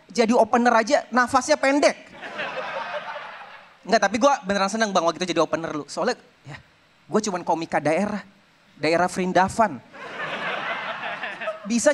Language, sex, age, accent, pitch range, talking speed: Indonesian, male, 30-49, native, 170-245 Hz, 125 wpm